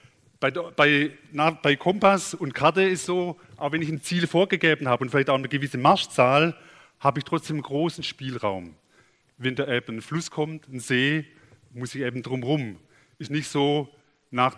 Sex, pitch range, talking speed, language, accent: male, 130-155 Hz, 180 wpm, German, German